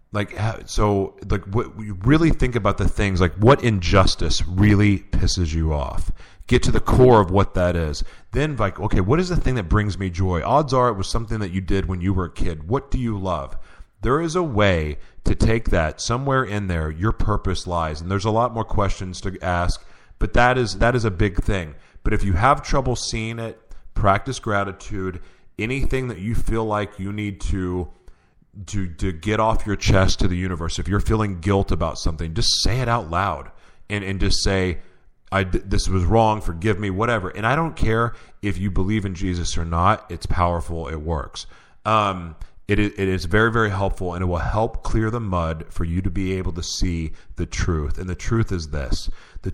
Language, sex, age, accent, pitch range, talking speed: English, male, 30-49, American, 90-110 Hz, 210 wpm